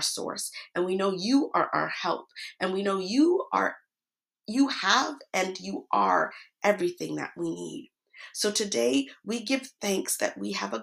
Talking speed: 170 wpm